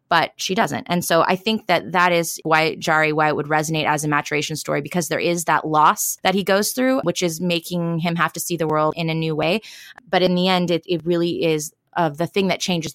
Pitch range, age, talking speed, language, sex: 155-190 Hz, 20-39, 260 wpm, English, female